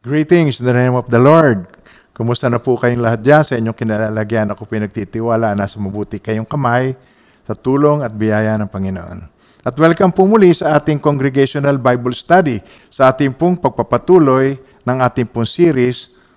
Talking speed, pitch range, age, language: 165 wpm, 115-150 Hz, 50-69, Filipino